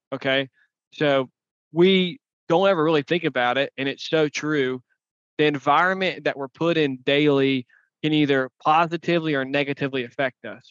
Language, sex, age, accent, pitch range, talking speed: English, male, 20-39, American, 135-155 Hz, 150 wpm